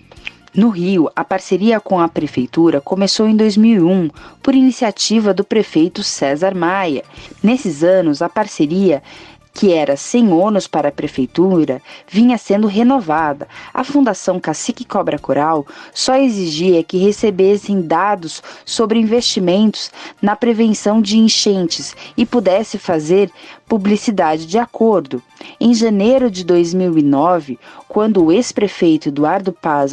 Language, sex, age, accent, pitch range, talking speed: Portuguese, female, 20-39, Brazilian, 165-235 Hz, 120 wpm